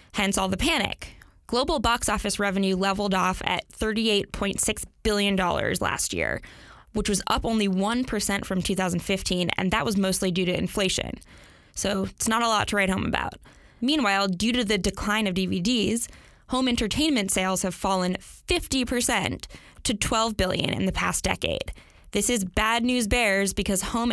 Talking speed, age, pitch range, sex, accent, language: 160 wpm, 20-39, 190-230 Hz, female, American, English